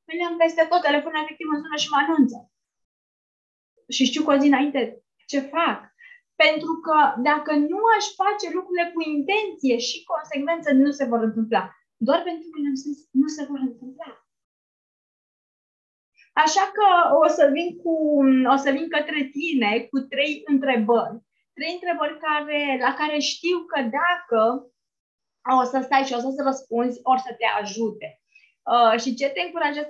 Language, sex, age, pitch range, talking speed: Romanian, female, 20-39, 245-320 Hz, 155 wpm